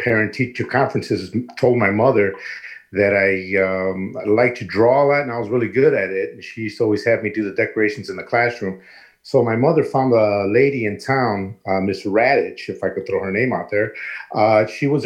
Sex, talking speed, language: male, 220 wpm, English